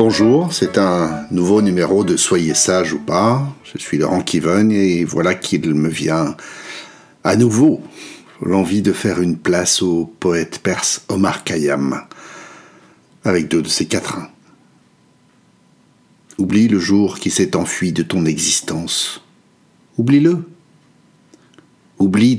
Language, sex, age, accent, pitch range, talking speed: French, male, 60-79, French, 90-125 Hz, 130 wpm